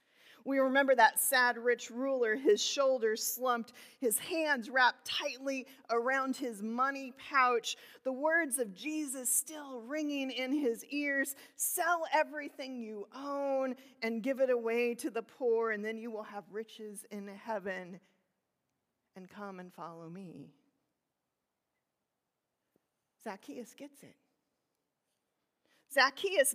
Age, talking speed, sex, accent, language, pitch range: 40-59, 120 wpm, female, American, English, 235-295 Hz